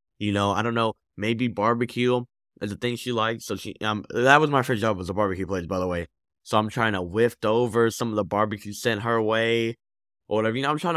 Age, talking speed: 10-29, 250 wpm